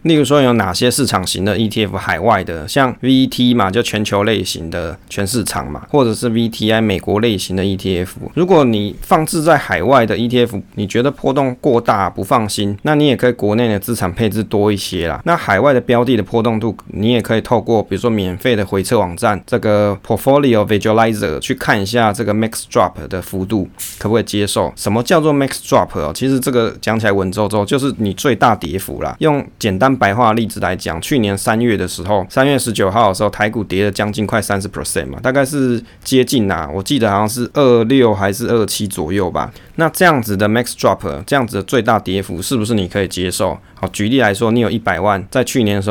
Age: 20-39